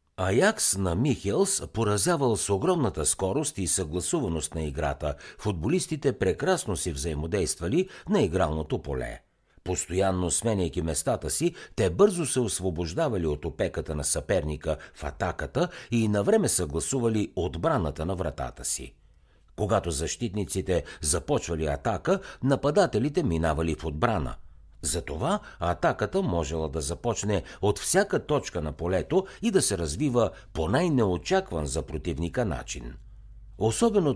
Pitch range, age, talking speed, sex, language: 80-115 Hz, 60-79, 120 wpm, male, Bulgarian